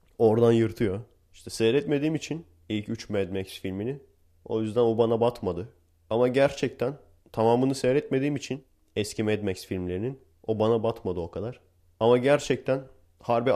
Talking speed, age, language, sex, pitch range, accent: 140 wpm, 30-49, Turkish, male, 95-130 Hz, native